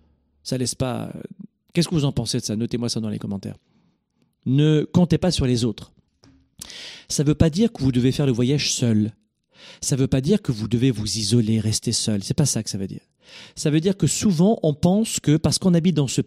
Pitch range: 110-150 Hz